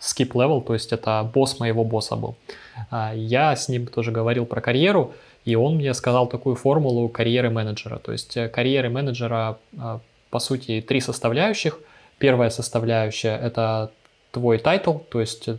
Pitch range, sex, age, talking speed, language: 115-135 Hz, male, 20-39, 150 wpm, Russian